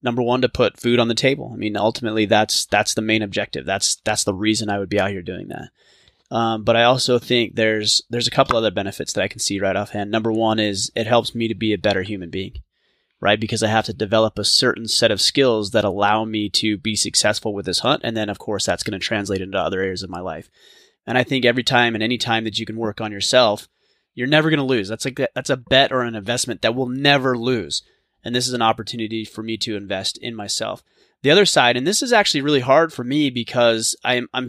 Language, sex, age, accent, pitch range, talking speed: English, male, 20-39, American, 110-125 Hz, 255 wpm